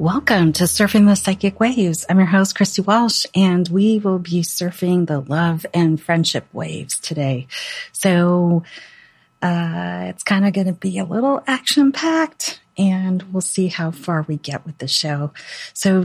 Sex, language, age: female, English, 40-59